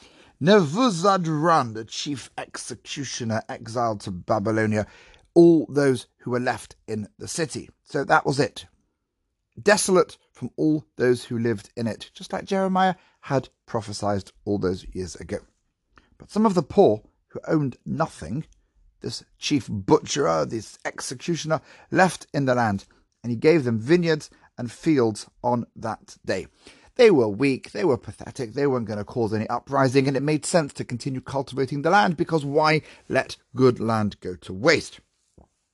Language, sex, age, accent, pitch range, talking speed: English, male, 40-59, British, 110-160 Hz, 155 wpm